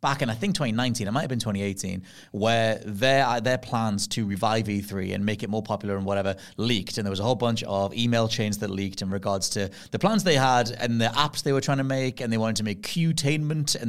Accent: British